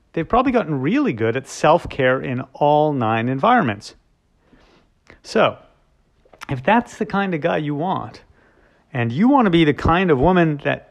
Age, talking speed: 40-59, 165 wpm